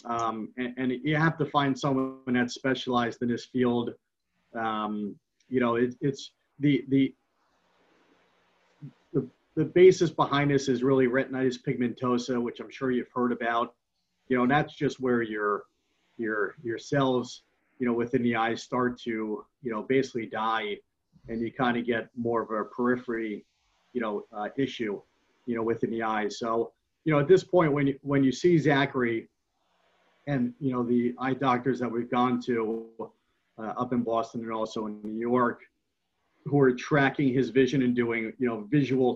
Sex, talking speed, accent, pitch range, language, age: male, 175 wpm, American, 120-135 Hz, English, 40-59